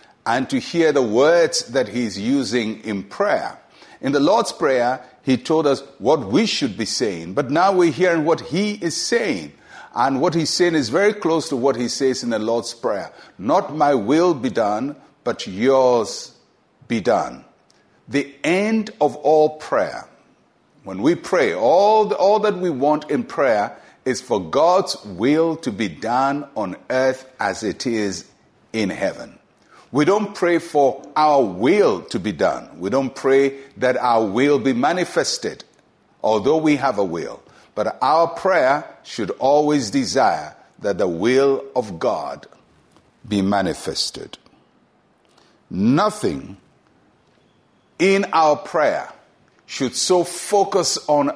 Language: English